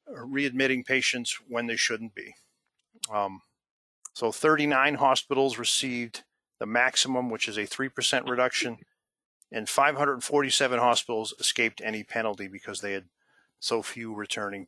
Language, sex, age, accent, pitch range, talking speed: English, male, 50-69, American, 115-145 Hz, 125 wpm